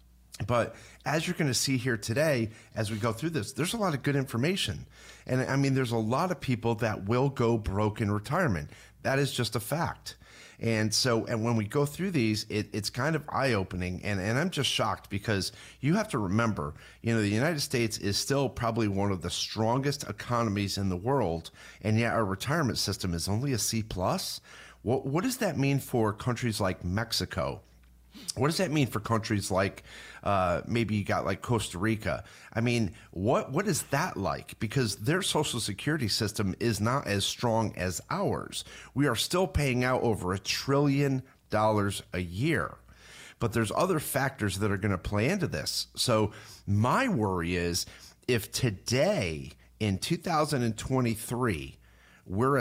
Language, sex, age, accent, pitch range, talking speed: English, male, 40-59, American, 100-135 Hz, 180 wpm